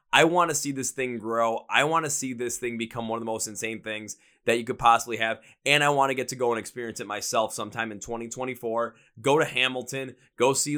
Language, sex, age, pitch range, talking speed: English, male, 20-39, 120-145 Hz, 245 wpm